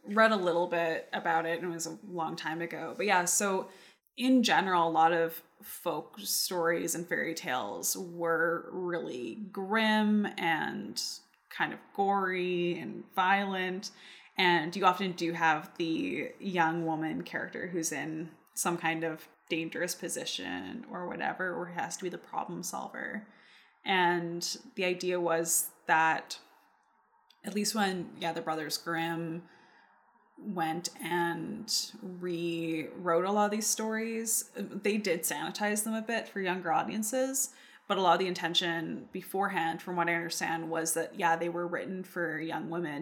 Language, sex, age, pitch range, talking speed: English, female, 20-39, 165-215 Hz, 150 wpm